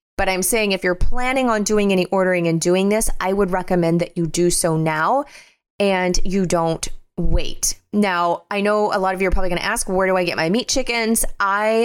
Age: 20-39